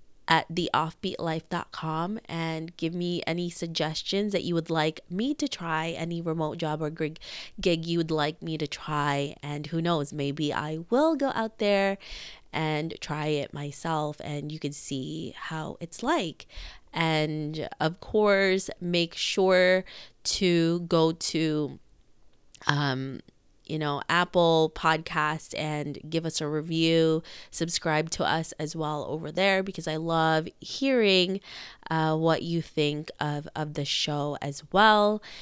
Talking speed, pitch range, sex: 140 wpm, 150-175 Hz, female